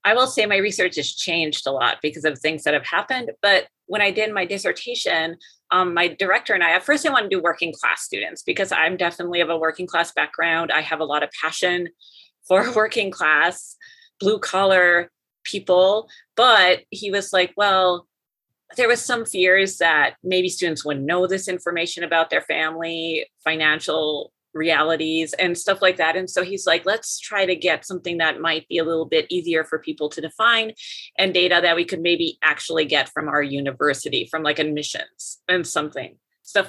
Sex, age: female, 30-49